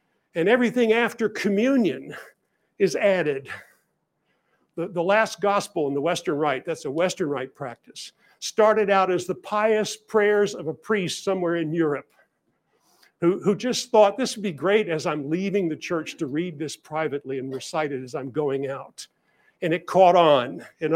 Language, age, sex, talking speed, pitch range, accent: English, 50-69, male, 170 wpm, 155-215 Hz, American